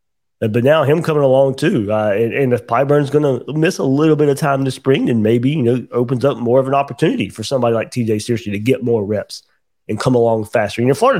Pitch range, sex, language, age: 110-140 Hz, male, English, 30-49